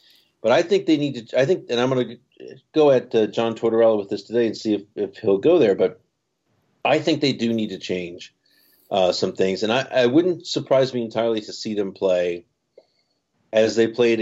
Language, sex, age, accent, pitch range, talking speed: English, male, 50-69, American, 95-120 Hz, 220 wpm